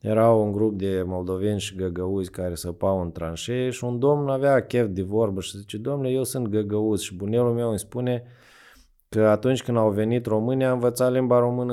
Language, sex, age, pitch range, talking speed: Romanian, male, 20-39, 95-120 Hz, 200 wpm